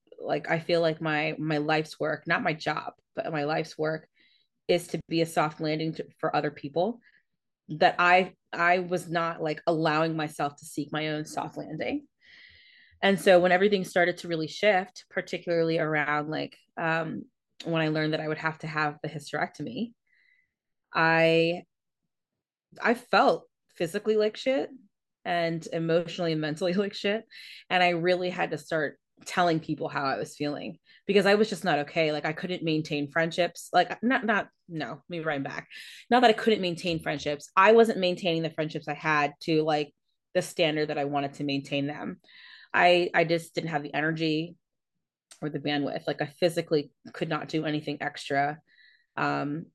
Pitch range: 155-185 Hz